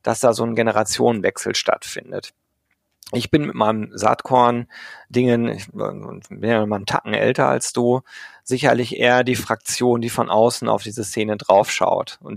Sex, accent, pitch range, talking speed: male, German, 110-130 Hz, 155 wpm